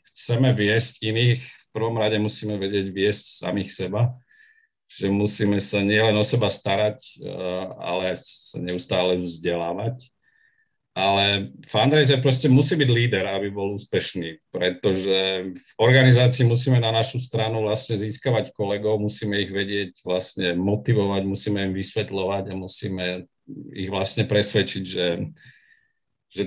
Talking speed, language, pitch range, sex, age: 125 wpm, Czech, 95-120 Hz, male, 50-69